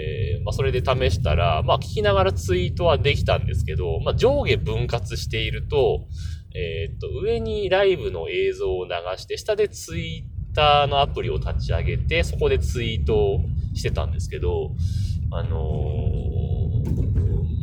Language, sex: Japanese, male